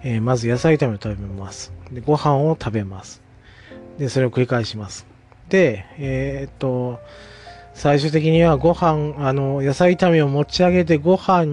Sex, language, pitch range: male, Japanese, 110-145 Hz